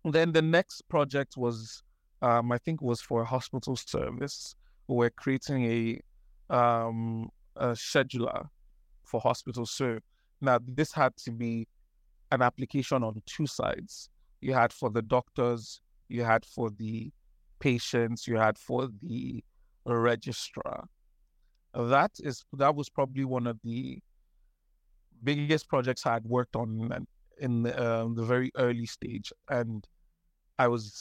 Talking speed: 140 wpm